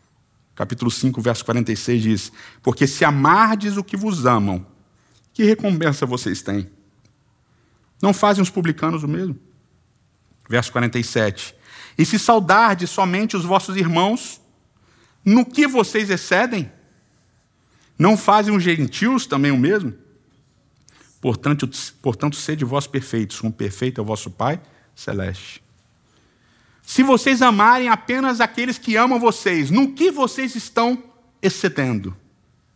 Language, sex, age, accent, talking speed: Portuguese, male, 50-69, Brazilian, 125 wpm